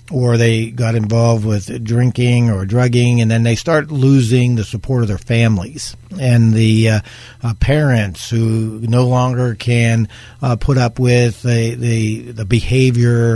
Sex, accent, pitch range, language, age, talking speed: male, American, 115-135 Hz, English, 50-69, 155 wpm